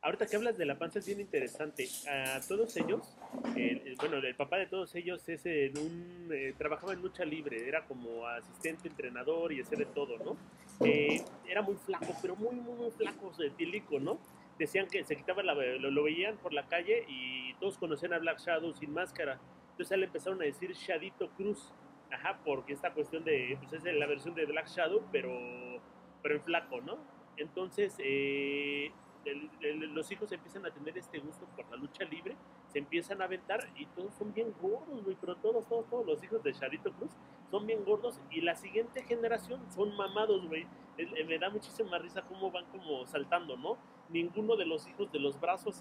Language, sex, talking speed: Spanish, male, 200 wpm